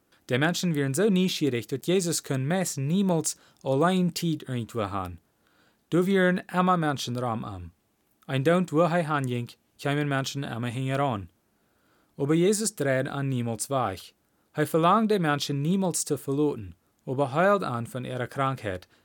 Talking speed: 155 wpm